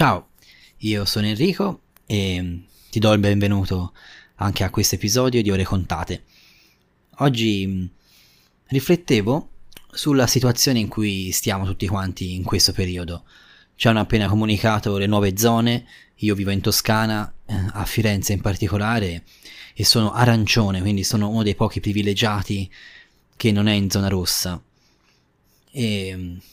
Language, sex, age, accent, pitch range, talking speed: Italian, male, 20-39, native, 95-110 Hz, 135 wpm